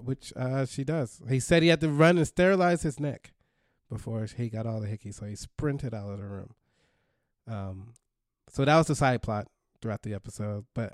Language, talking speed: English, 210 wpm